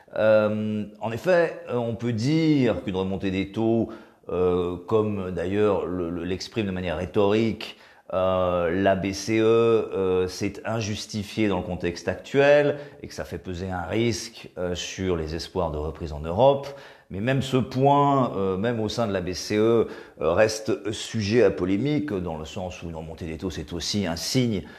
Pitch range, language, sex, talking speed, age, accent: 95-130 Hz, French, male, 175 wpm, 40-59, French